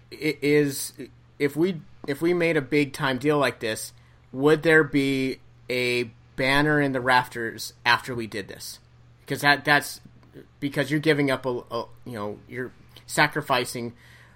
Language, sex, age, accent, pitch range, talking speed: English, male, 30-49, American, 120-145 Hz, 160 wpm